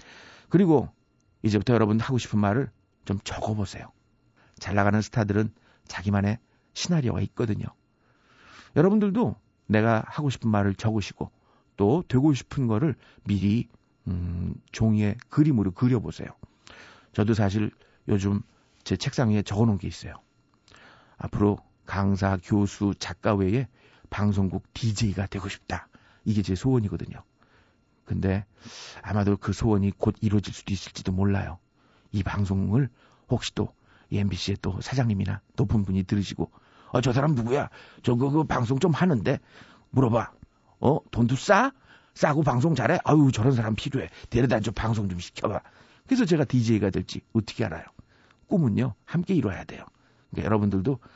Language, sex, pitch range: Korean, male, 100-125 Hz